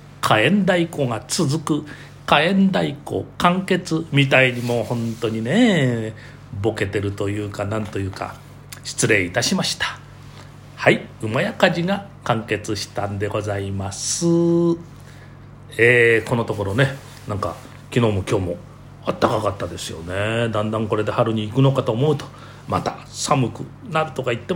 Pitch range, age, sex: 105-145 Hz, 40-59, male